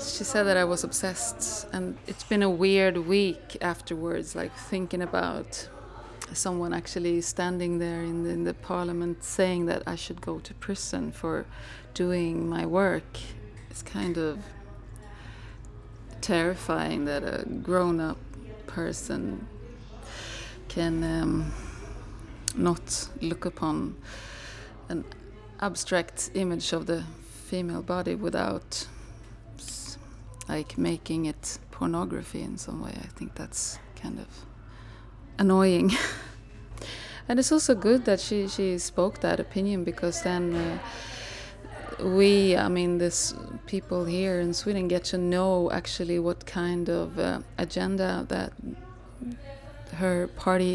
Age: 30-49